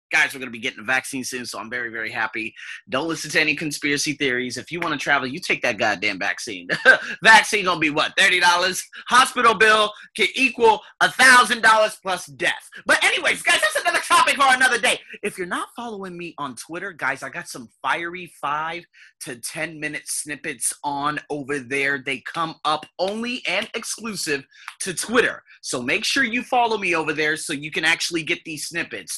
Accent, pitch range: American, 150-235 Hz